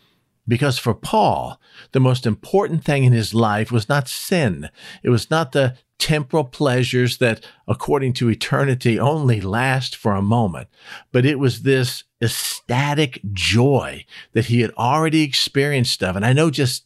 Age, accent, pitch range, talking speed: 50-69, American, 110-140 Hz, 155 wpm